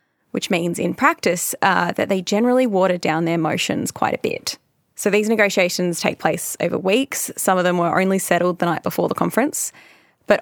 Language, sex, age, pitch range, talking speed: English, female, 10-29, 180-215 Hz, 195 wpm